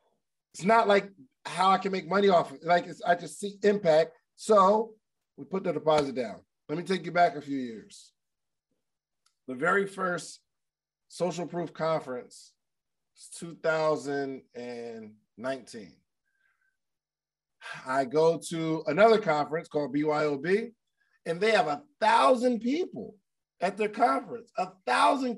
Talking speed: 135 wpm